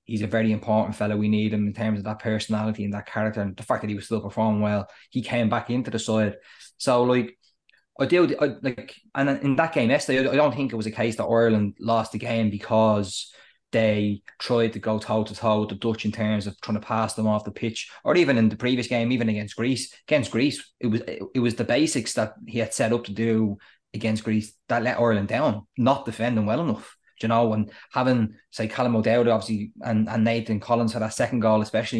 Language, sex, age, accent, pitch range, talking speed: English, male, 20-39, Irish, 110-120 Hz, 240 wpm